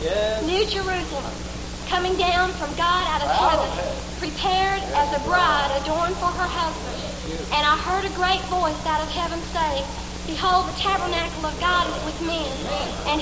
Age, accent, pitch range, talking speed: 50-69, American, 300-370 Hz, 165 wpm